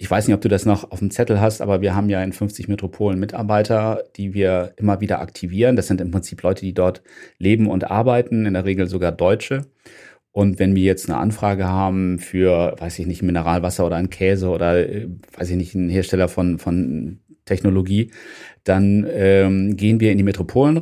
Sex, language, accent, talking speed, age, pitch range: male, German, German, 200 wpm, 30-49, 95-110 Hz